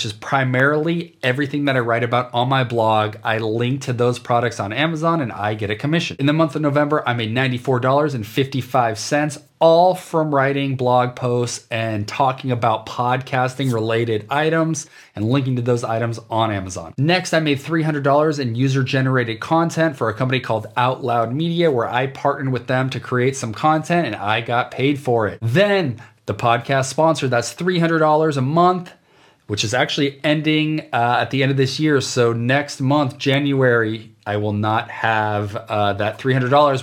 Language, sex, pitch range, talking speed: English, male, 115-150 Hz, 175 wpm